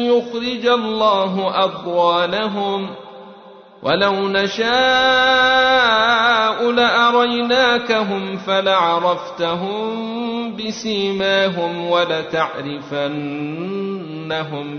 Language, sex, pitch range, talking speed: Arabic, male, 145-200 Hz, 40 wpm